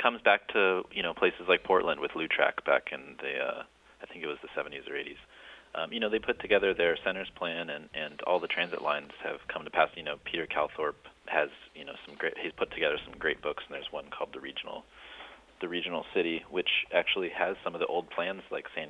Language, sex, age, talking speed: English, male, 30-49, 240 wpm